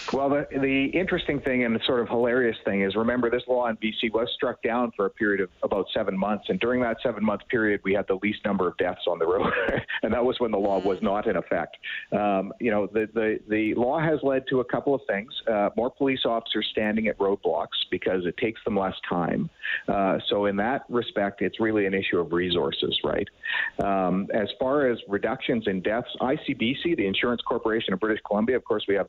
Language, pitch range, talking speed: English, 100-125 Hz, 225 wpm